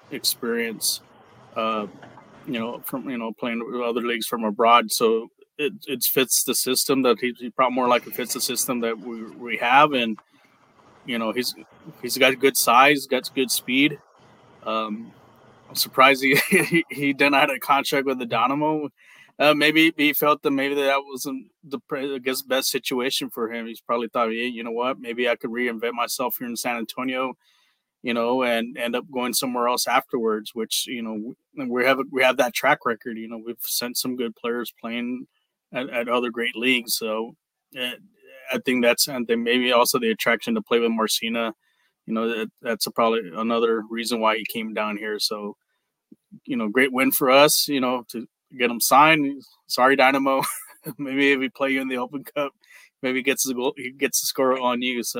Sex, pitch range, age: male, 115-135 Hz, 20-39